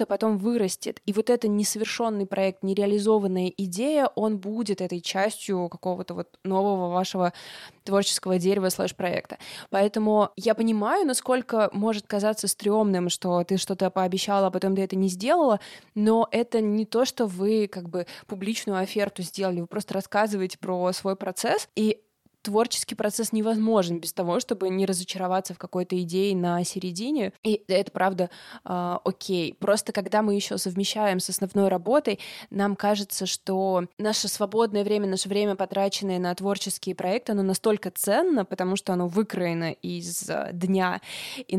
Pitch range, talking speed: 185-215 Hz, 150 wpm